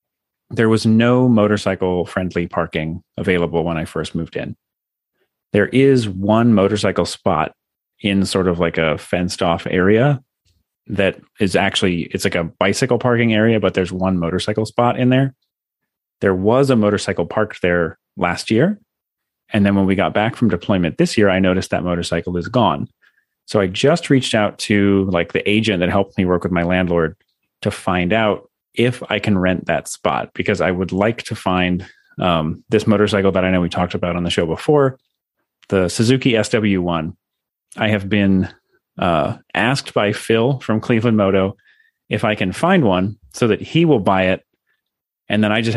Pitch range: 90-110 Hz